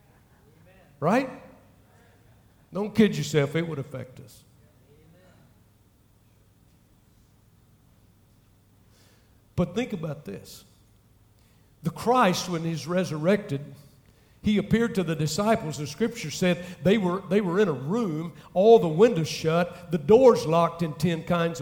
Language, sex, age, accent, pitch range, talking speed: English, male, 50-69, American, 120-200 Hz, 115 wpm